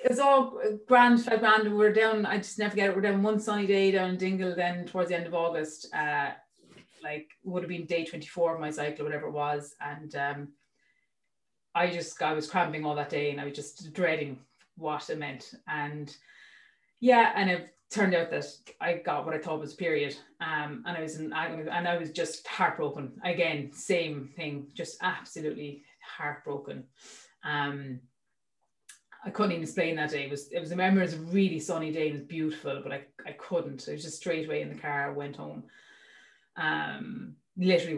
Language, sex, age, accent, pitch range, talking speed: English, female, 30-49, Irish, 145-180 Hz, 200 wpm